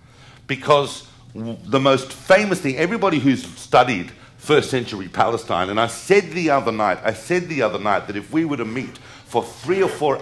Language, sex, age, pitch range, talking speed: English, male, 50-69, 115-145 Hz, 190 wpm